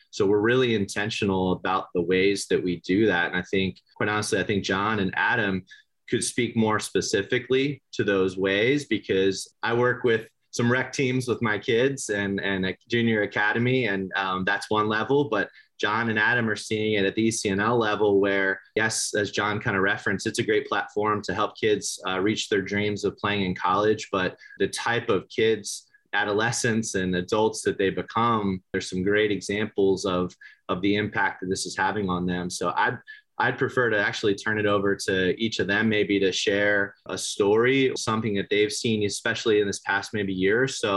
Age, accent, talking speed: 30-49, American, 200 wpm